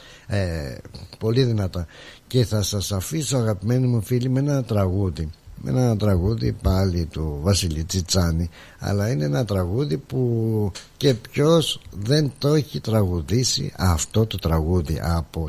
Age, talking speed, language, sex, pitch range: 60-79, 130 wpm, Greek, male, 95-125 Hz